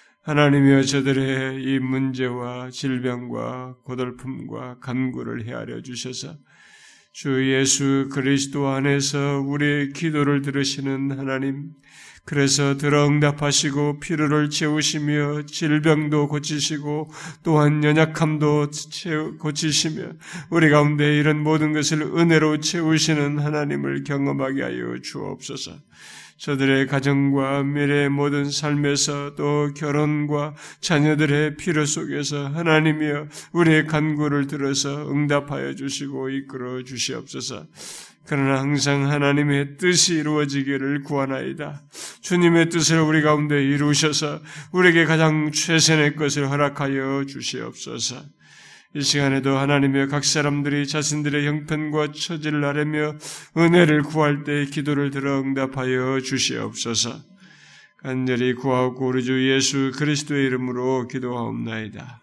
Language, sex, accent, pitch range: Korean, male, native, 135-150 Hz